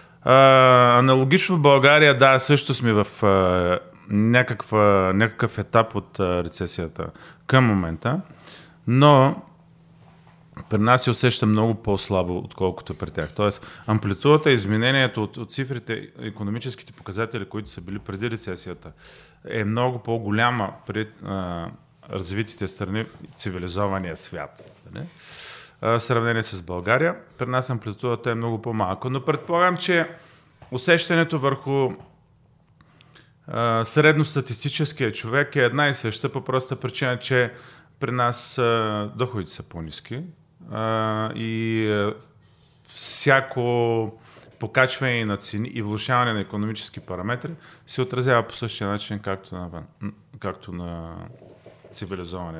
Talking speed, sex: 115 wpm, male